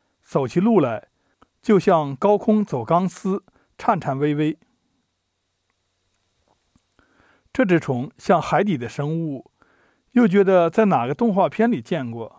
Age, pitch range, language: 50-69, 135-210 Hz, Chinese